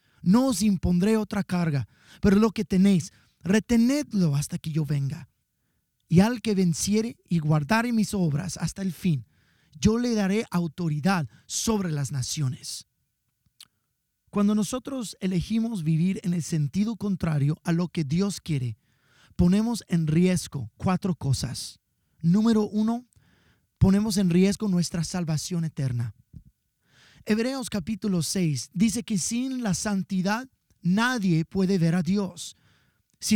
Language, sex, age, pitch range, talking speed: English, male, 30-49, 160-220 Hz, 130 wpm